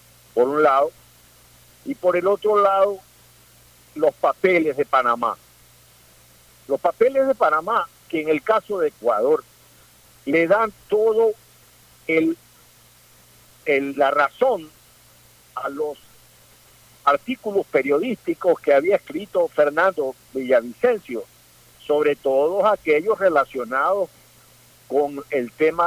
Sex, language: male, Spanish